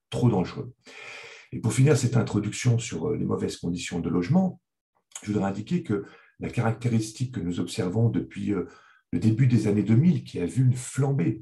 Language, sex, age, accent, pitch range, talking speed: French, male, 50-69, French, 105-135 Hz, 175 wpm